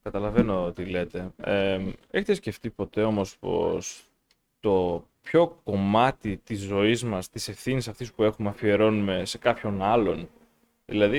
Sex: male